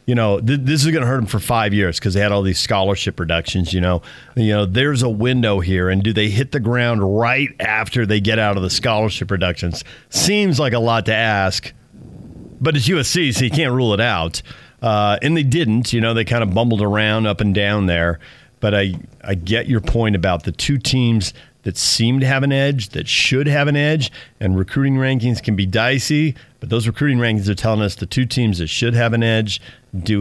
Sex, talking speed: male, 230 wpm